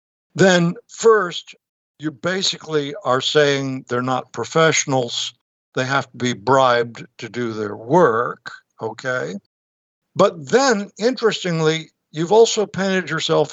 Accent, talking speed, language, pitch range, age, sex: American, 115 wpm, English, 130-180 Hz, 60-79, male